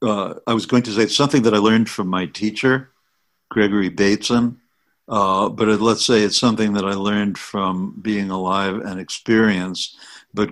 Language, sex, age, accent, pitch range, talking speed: English, male, 60-79, American, 95-115 Hz, 175 wpm